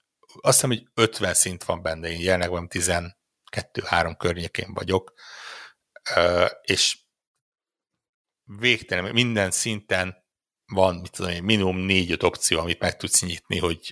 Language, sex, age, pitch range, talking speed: Hungarian, male, 60-79, 90-110 Hz, 120 wpm